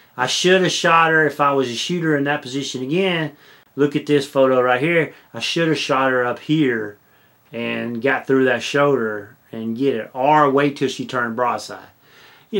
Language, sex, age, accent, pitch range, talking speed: English, male, 30-49, American, 125-150 Hz, 200 wpm